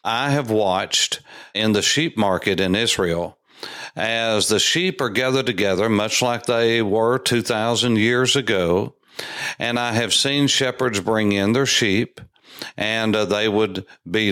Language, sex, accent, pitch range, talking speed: English, male, American, 110-135 Hz, 145 wpm